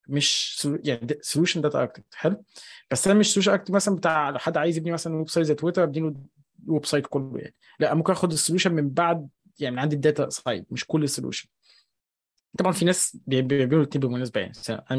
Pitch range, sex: 140-180 Hz, male